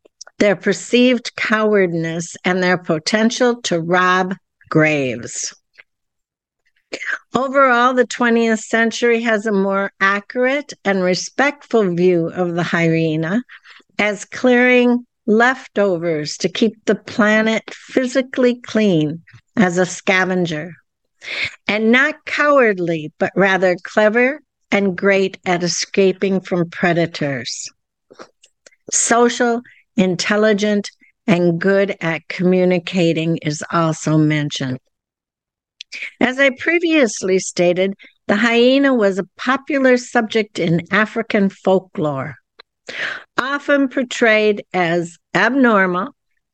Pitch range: 180-240 Hz